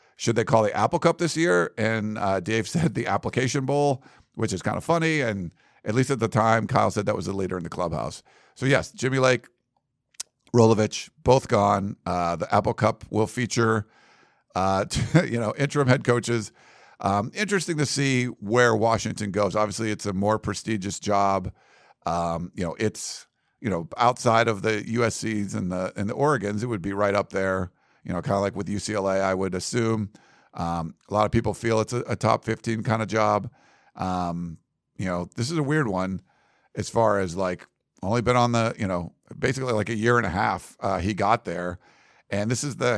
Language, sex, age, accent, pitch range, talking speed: English, male, 50-69, American, 100-125 Hz, 205 wpm